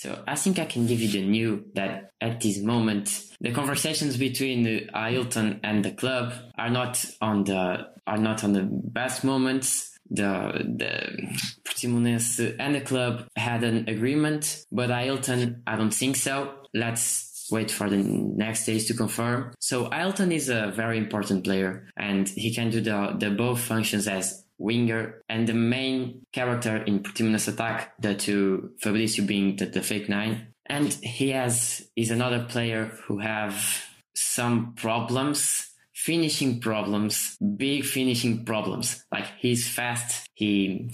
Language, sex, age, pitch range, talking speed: English, male, 20-39, 110-130 Hz, 150 wpm